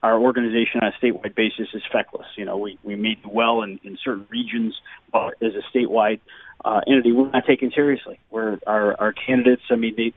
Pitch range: 120-155 Hz